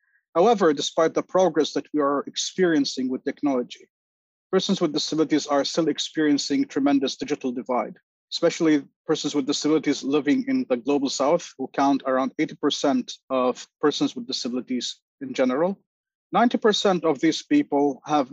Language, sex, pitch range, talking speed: English, male, 140-175 Hz, 140 wpm